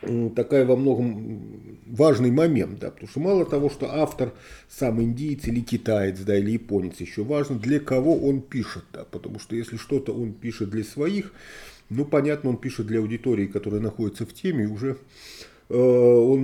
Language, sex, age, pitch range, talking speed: Russian, male, 40-59, 110-140 Hz, 170 wpm